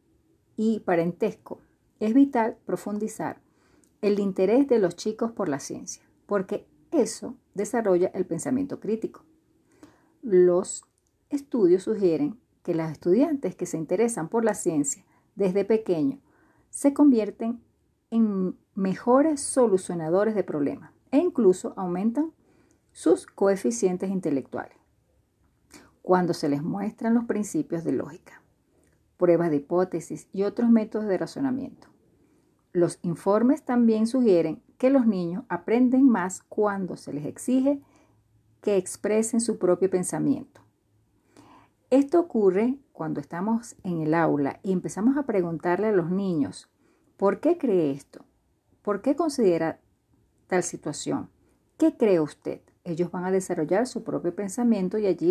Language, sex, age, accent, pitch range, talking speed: Spanish, female, 40-59, American, 180-240 Hz, 125 wpm